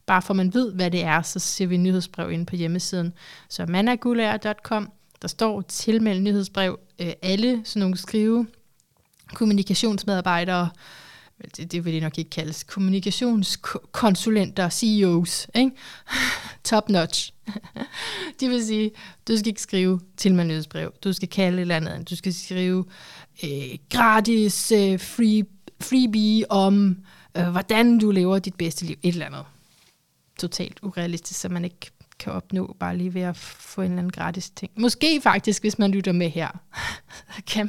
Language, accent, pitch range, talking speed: Danish, native, 175-215 Hz, 150 wpm